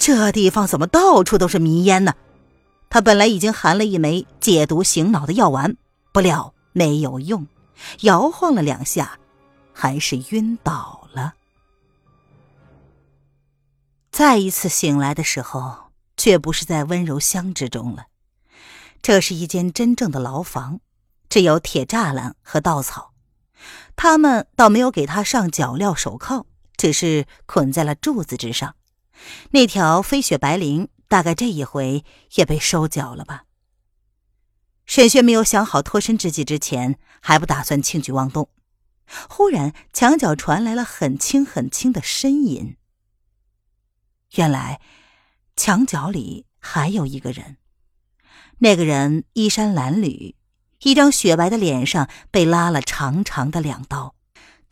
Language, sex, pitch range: Chinese, female, 135-200 Hz